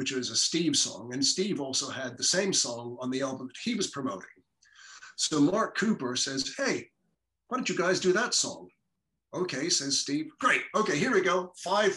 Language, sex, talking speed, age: English, male, 200 wpm, 50-69